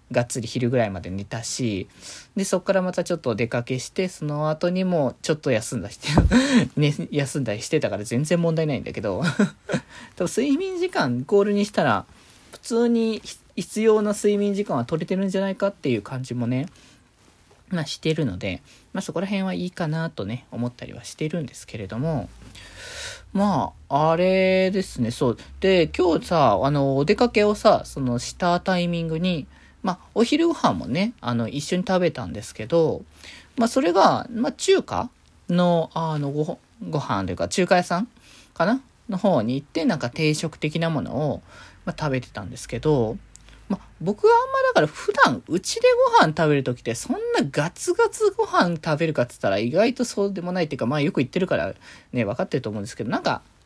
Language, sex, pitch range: Japanese, male, 130-205 Hz